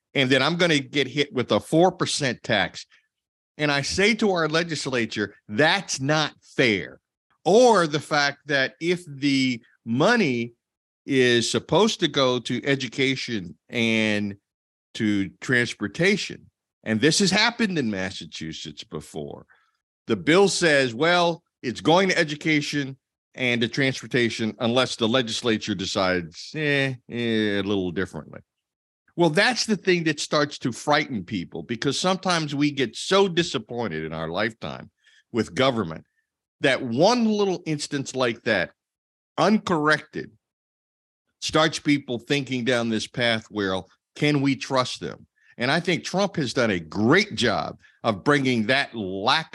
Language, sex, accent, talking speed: English, male, American, 135 wpm